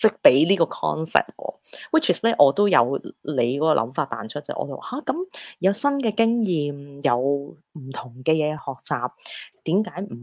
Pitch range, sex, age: 130-180 Hz, female, 20-39